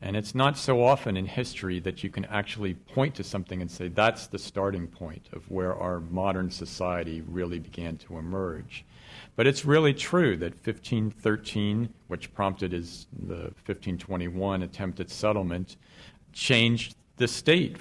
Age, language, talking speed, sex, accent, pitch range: 50-69, English, 155 wpm, male, American, 90-105 Hz